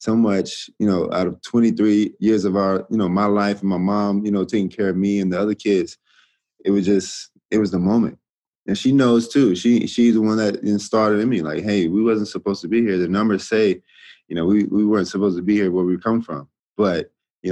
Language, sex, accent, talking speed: English, male, American, 245 wpm